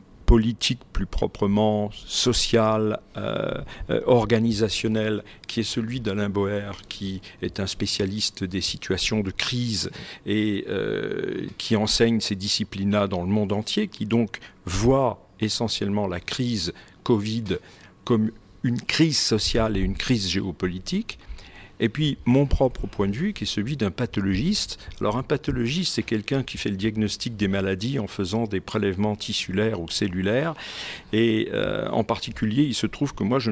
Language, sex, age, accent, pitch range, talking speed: French, male, 50-69, French, 100-125 Hz, 150 wpm